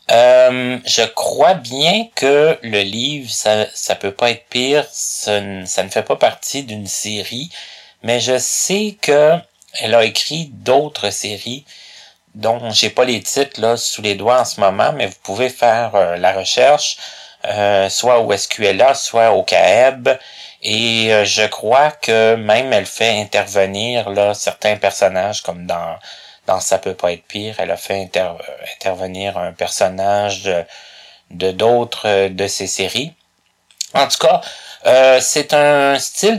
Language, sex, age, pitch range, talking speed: French, male, 30-49, 100-130 Hz, 155 wpm